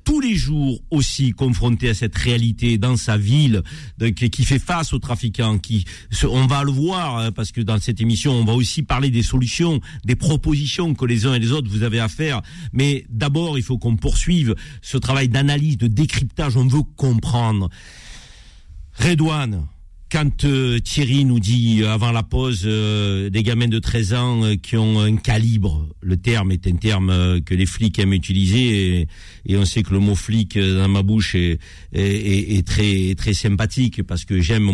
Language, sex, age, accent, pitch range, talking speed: French, male, 50-69, French, 100-125 Hz, 190 wpm